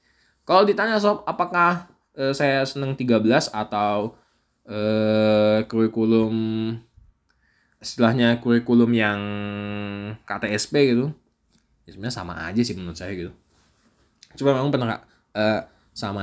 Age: 20-39